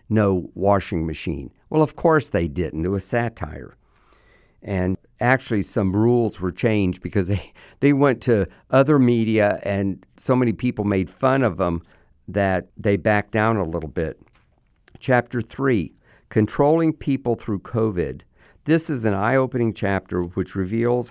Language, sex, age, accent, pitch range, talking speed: English, male, 50-69, American, 90-120 Hz, 150 wpm